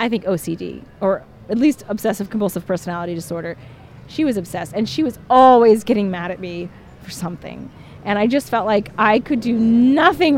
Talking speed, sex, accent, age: 185 wpm, female, American, 30-49